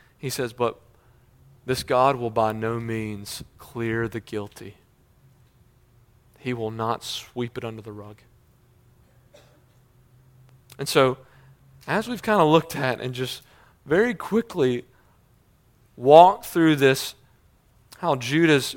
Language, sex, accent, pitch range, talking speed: English, male, American, 115-145 Hz, 120 wpm